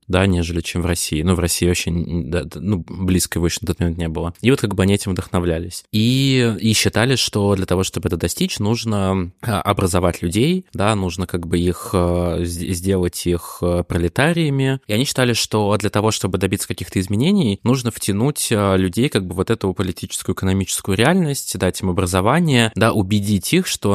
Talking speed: 185 wpm